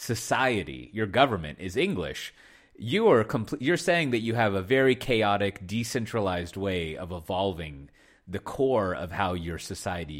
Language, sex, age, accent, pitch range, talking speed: English, male, 30-49, American, 95-130 Hz, 145 wpm